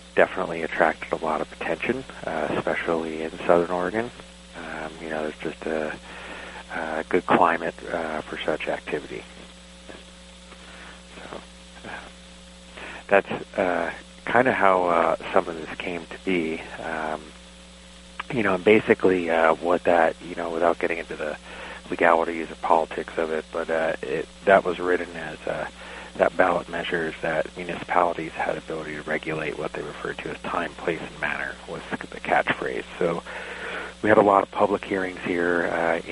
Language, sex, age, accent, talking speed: English, male, 30-49, American, 160 wpm